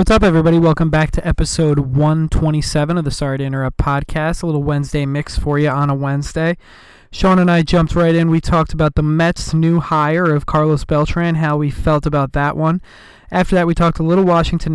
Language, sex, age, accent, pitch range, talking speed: English, male, 20-39, American, 150-170 Hz, 210 wpm